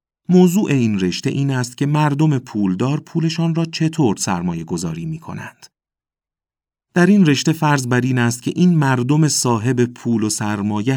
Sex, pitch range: male, 100-145 Hz